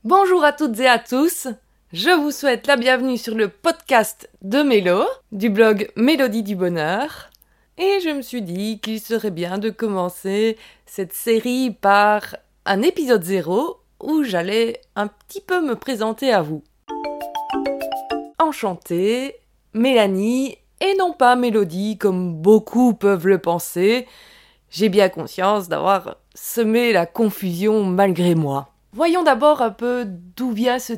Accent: French